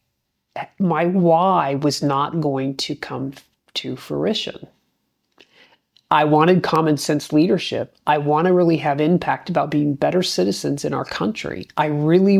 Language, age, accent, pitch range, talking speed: English, 50-69, American, 145-175 Hz, 140 wpm